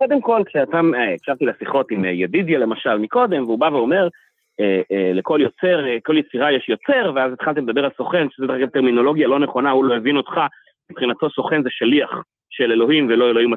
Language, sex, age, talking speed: Hebrew, male, 30-49, 200 wpm